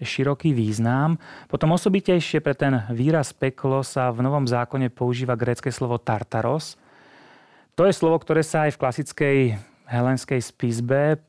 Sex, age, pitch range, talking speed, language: male, 30-49, 120-140 Hz, 140 wpm, Czech